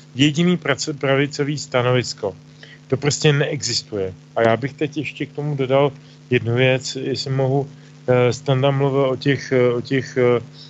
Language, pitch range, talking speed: Slovak, 125-145 Hz, 125 wpm